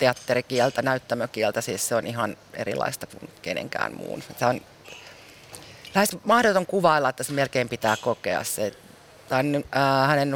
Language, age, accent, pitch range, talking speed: Finnish, 40-59, native, 125-155 Hz, 135 wpm